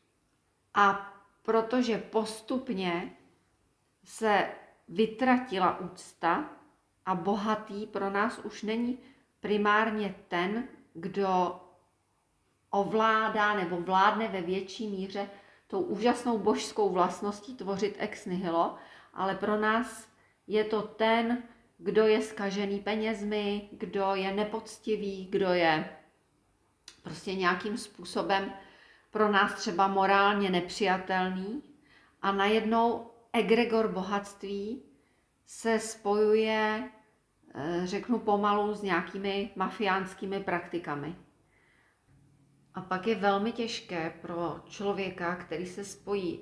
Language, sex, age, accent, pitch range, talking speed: Czech, female, 40-59, native, 180-215 Hz, 95 wpm